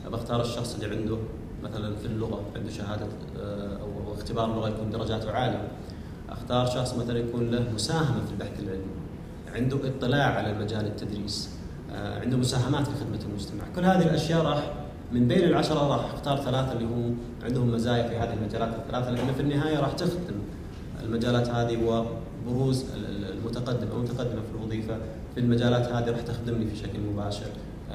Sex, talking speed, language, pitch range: male, 155 wpm, Arabic, 105-125 Hz